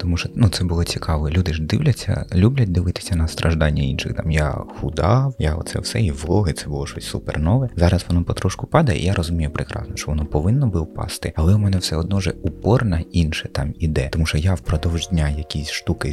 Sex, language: male, Ukrainian